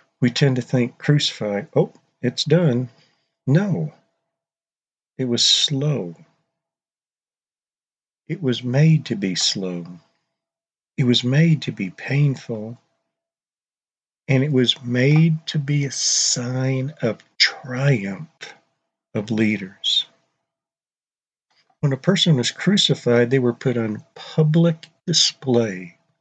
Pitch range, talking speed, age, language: 120-155 Hz, 110 wpm, 50-69, English